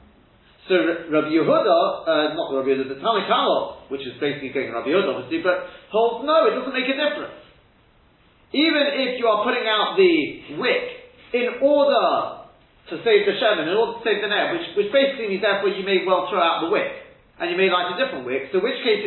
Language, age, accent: English, 40-59, British